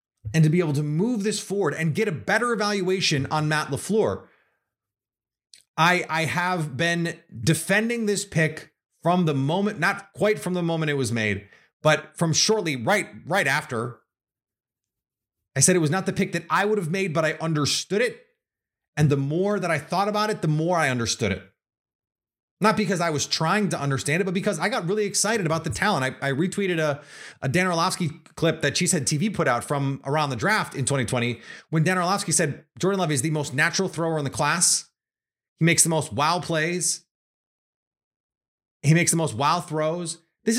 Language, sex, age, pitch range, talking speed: English, male, 30-49, 150-200 Hz, 195 wpm